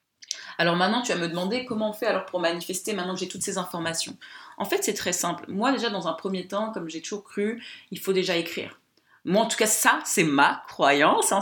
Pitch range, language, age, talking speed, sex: 165-215 Hz, French, 20-39, 240 wpm, female